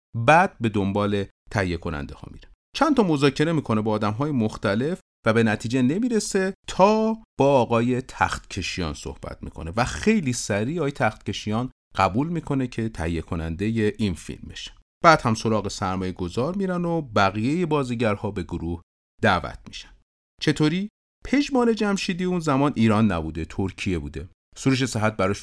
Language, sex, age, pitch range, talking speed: Persian, male, 40-59, 90-140 Hz, 150 wpm